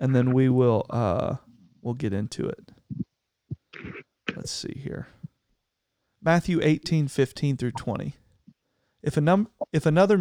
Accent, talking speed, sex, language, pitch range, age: American, 130 wpm, male, English, 140-165 Hz, 40-59